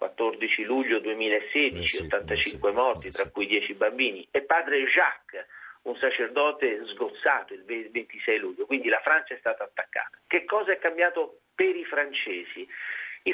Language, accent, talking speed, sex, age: Italian, native, 145 wpm, male, 50-69